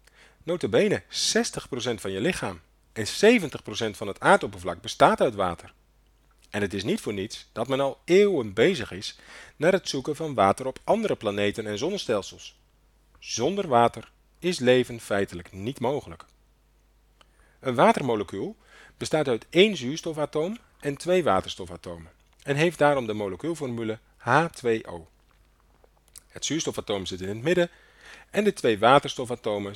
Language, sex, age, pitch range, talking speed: Dutch, male, 40-59, 105-145 Hz, 135 wpm